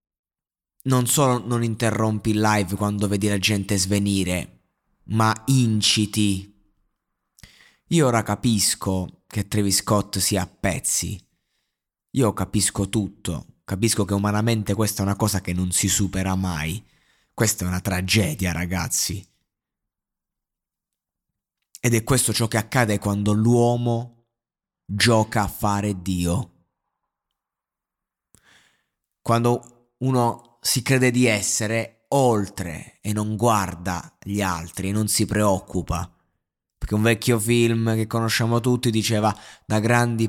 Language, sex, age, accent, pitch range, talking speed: Italian, male, 30-49, native, 95-115 Hz, 120 wpm